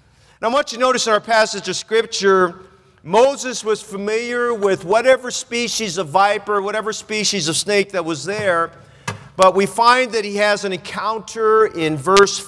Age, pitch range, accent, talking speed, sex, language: 40-59, 185-225 Hz, American, 175 wpm, male, English